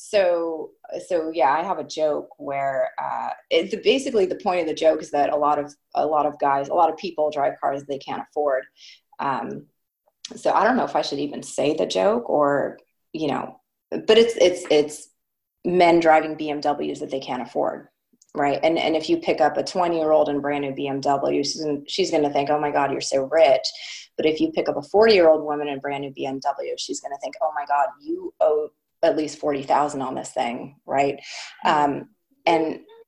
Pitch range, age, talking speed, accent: 145-200 Hz, 30-49, 210 wpm, American